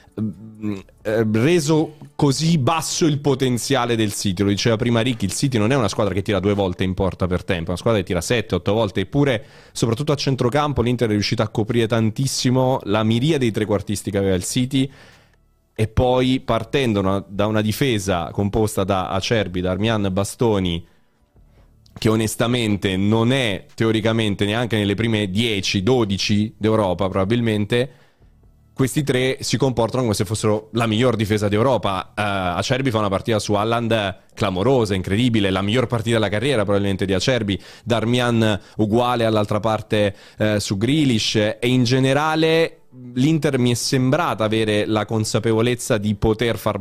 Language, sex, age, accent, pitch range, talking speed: Italian, male, 30-49, native, 105-130 Hz, 155 wpm